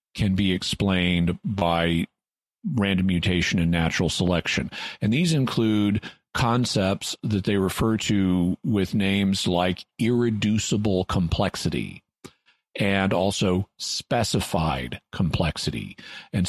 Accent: American